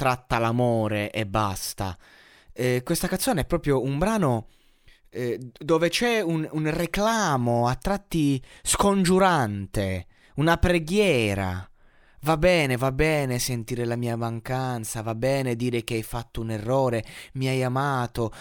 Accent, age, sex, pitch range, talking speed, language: native, 20-39, male, 120-160 Hz, 135 wpm, Italian